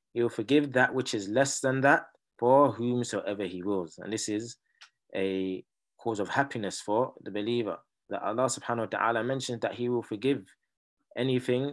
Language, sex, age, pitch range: English, male, 20-39, 105-130 Hz